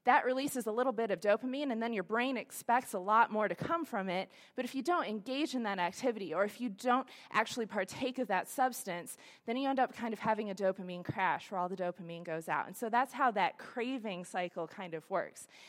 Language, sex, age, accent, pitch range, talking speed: English, female, 20-39, American, 190-245 Hz, 235 wpm